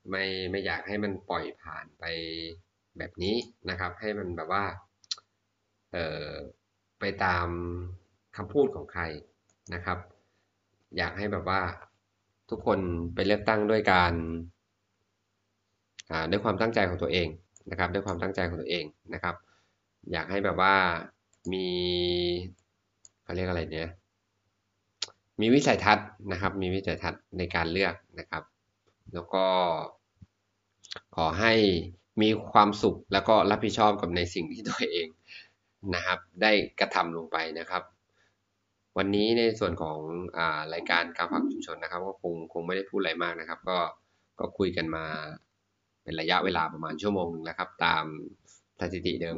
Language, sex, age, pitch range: Thai, male, 20-39, 85-100 Hz